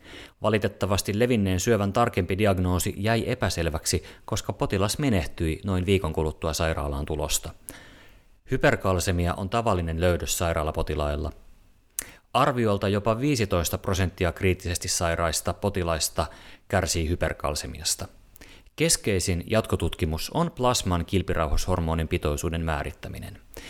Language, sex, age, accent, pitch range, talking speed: Finnish, male, 30-49, native, 85-105 Hz, 90 wpm